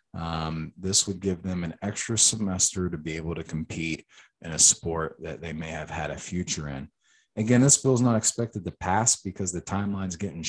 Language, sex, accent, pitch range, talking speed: English, male, American, 80-105 Hz, 210 wpm